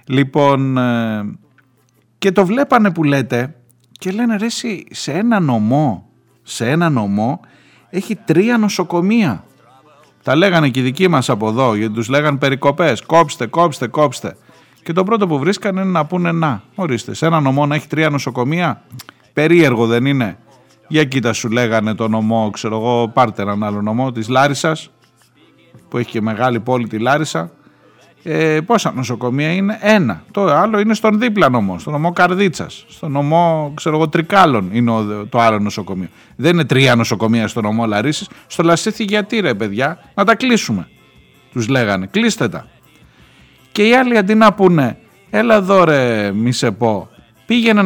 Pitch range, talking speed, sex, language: 120-175 Hz, 165 wpm, male, Greek